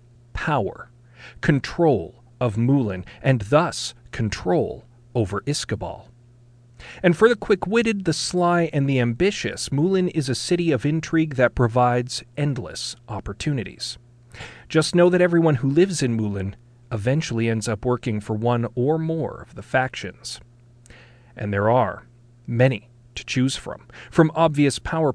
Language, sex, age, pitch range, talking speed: English, male, 40-59, 120-150 Hz, 140 wpm